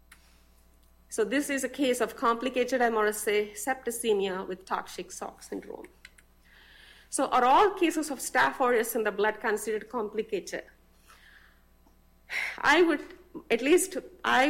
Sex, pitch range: female, 200-265 Hz